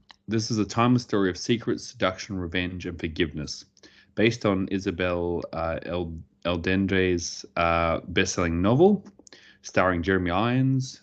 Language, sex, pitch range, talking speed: English, male, 85-105 Hz, 125 wpm